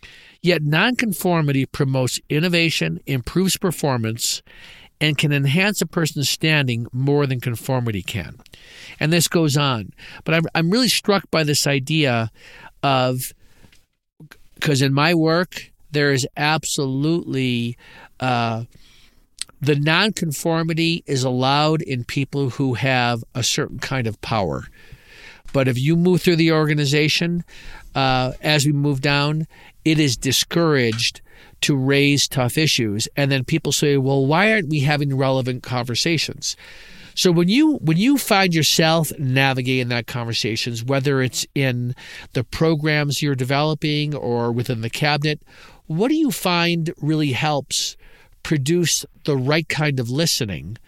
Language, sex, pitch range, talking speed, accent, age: English, male, 130-160 Hz, 130 wpm, American, 50-69